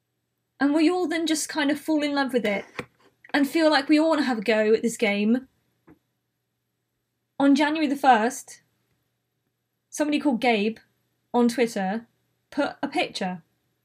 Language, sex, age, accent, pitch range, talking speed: English, female, 20-39, British, 225-285 Hz, 160 wpm